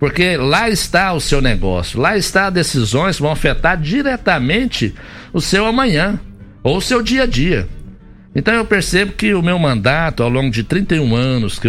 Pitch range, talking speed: 110-165 Hz, 185 wpm